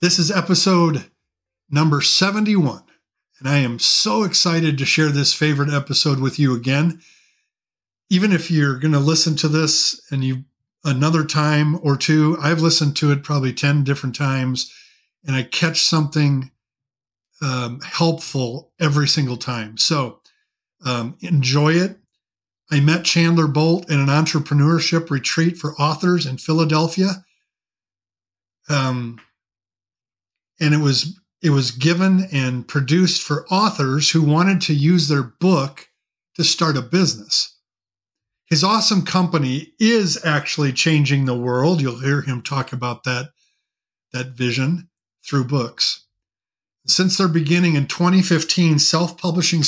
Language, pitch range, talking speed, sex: English, 130-170 Hz, 130 wpm, male